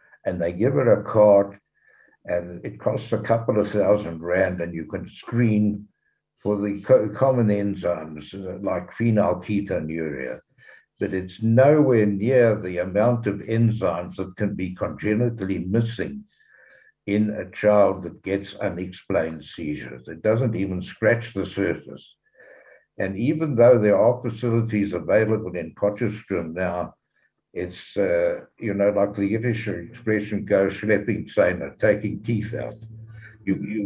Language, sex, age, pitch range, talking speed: English, male, 60-79, 95-115 Hz, 135 wpm